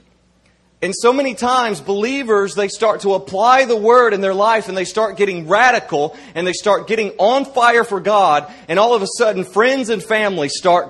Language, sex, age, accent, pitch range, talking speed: English, male, 40-59, American, 180-235 Hz, 200 wpm